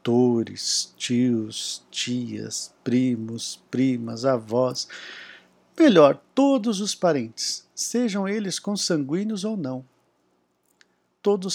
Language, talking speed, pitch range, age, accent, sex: Portuguese, 85 wpm, 125-170 Hz, 50-69, Brazilian, male